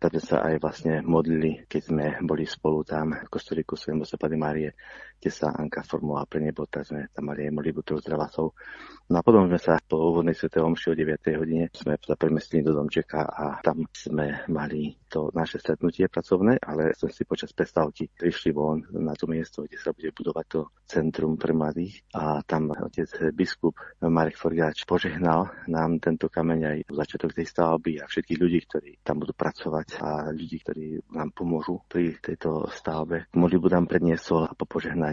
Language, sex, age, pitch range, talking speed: Slovak, male, 30-49, 75-85 Hz, 180 wpm